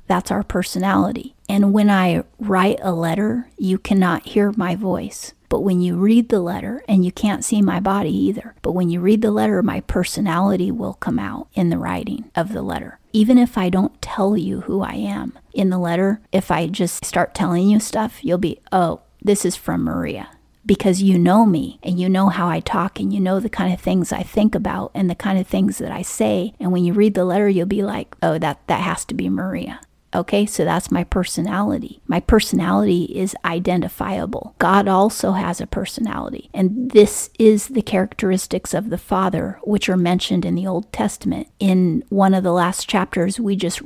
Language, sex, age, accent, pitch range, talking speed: English, female, 30-49, American, 180-210 Hz, 205 wpm